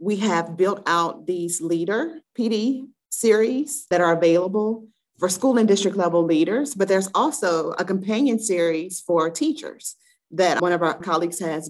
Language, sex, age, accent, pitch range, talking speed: English, female, 30-49, American, 170-225 Hz, 160 wpm